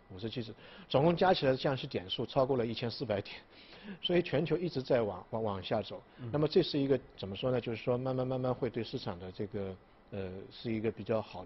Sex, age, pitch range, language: male, 50-69, 105-135 Hz, Chinese